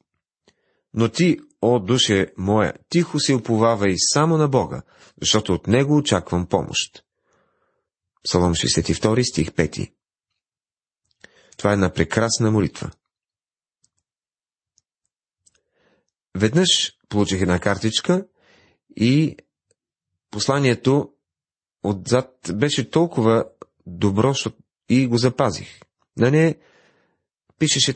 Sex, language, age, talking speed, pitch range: male, Bulgarian, 40-59, 90 wpm, 105-140 Hz